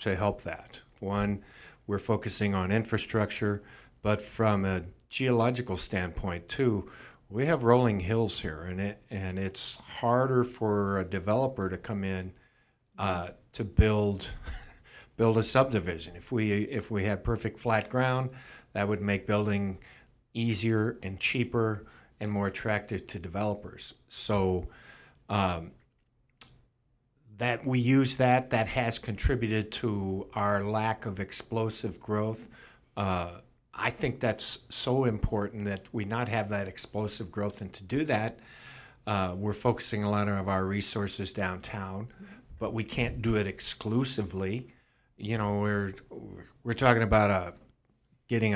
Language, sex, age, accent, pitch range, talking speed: English, male, 50-69, American, 100-120 Hz, 135 wpm